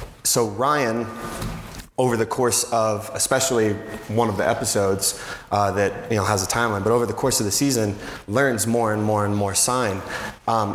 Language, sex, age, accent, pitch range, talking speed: English, male, 20-39, American, 105-120 Hz, 185 wpm